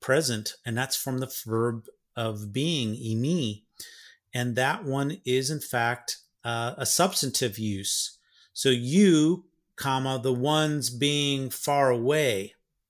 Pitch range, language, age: 115-140 Hz, English, 40-59